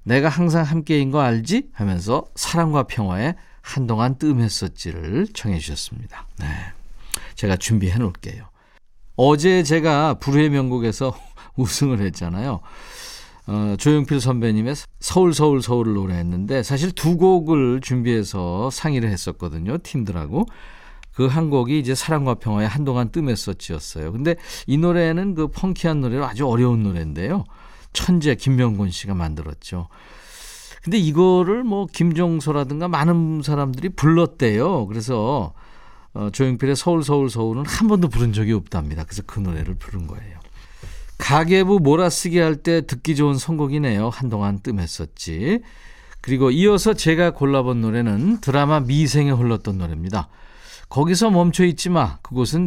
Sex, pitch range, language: male, 105-160 Hz, Korean